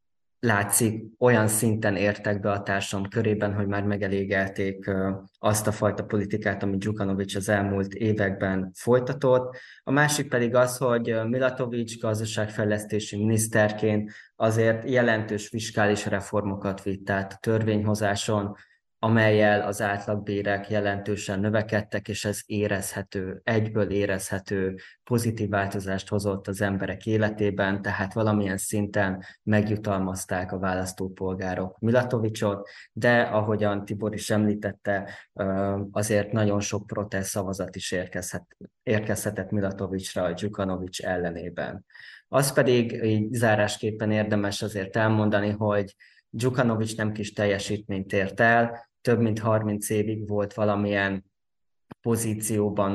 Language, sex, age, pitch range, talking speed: Hungarian, male, 20-39, 100-110 Hz, 110 wpm